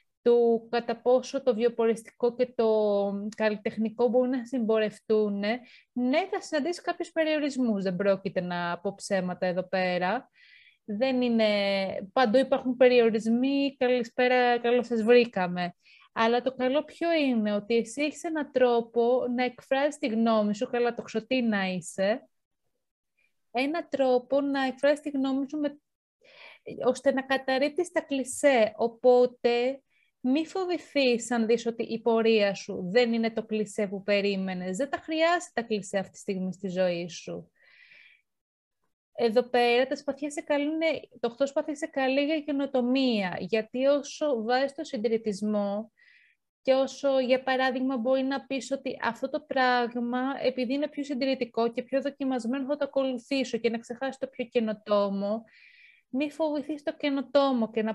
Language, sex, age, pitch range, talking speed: Greek, female, 20-39, 225-275 Hz, 145 wpm